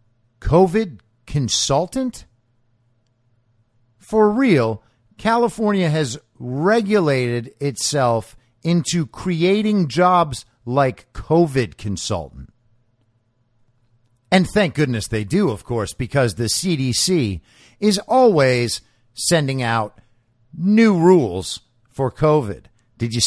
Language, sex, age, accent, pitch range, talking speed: English, male, 50-69, American, 115-155 Hz, 90 wpm